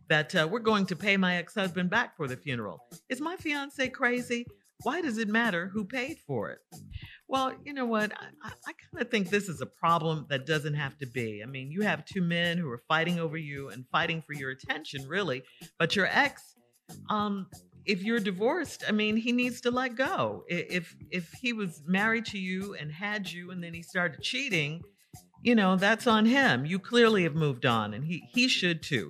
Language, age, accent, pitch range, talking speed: English, 50-69, American, 150-215 Hz, 210 wpm